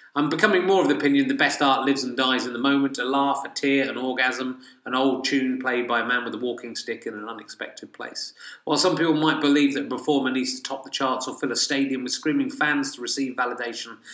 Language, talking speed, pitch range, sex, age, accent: English, 250 wpm, 120-145 Hz, male, 30-49, British